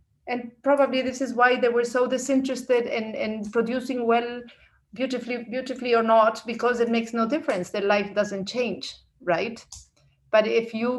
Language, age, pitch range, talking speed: English, 30-49, 195-235 Hz, 165 wpm